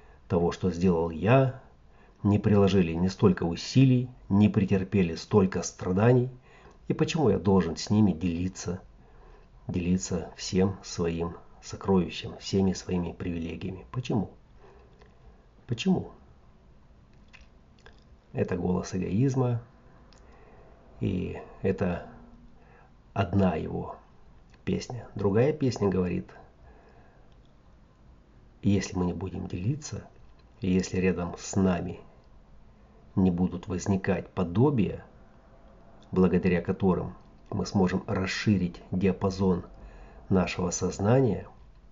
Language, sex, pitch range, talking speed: Russian, male, 85-105 Hz, 85 wpm